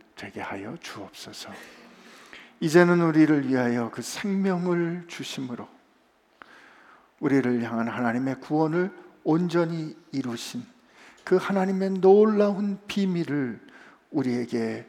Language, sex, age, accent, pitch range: Korean, male, 50-69, native, 140-190 Hz